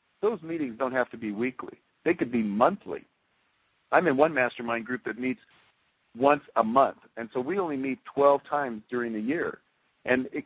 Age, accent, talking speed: 50-69, American, 190 wpm